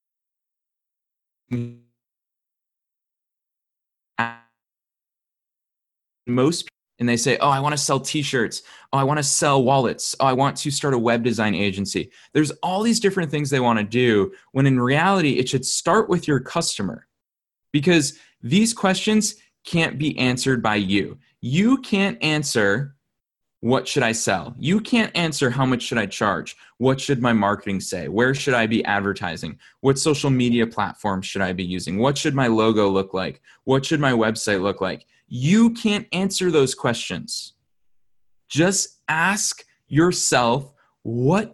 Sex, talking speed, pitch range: male, 155 wpm, 115-170 Hz